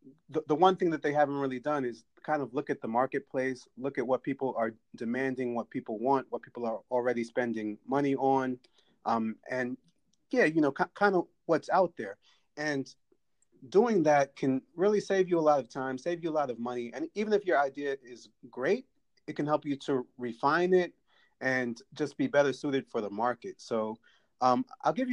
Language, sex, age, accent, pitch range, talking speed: English, male, 30-49, American, 125-150 Hz, 205 wpm